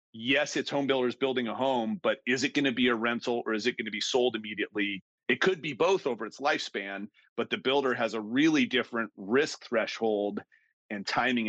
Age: 40-59